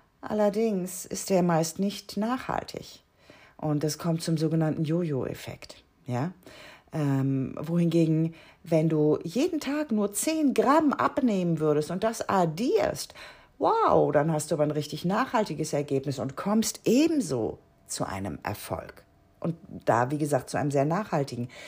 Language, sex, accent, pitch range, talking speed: German, female, German, 135-190 Hz, 140 wpm